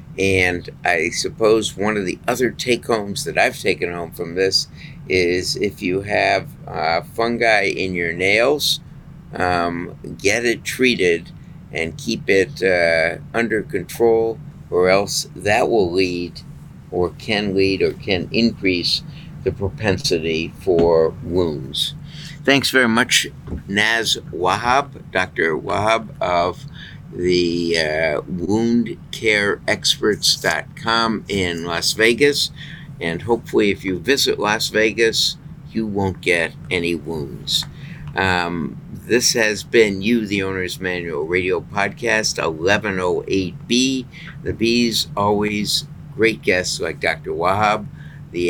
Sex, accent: male, American